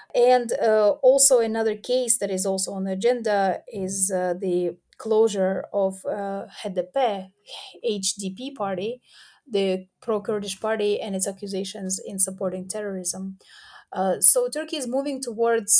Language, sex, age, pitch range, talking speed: English, female, 30-49, 190-235 Hz, 135 wpm